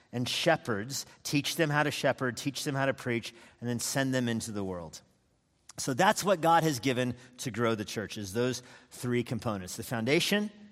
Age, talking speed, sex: 40-59, 195 wpm, male